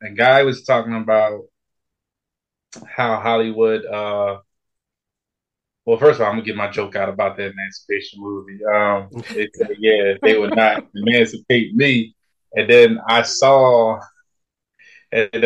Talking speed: 140 wpm